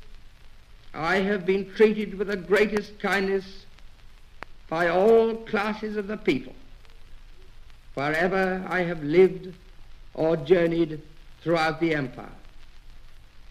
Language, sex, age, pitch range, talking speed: English, male, 60-79, 120-195 Hz, 100 wpm